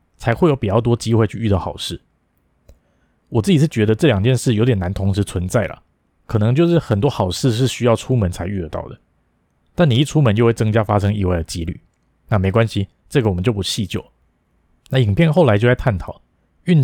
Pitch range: 95-125 Hz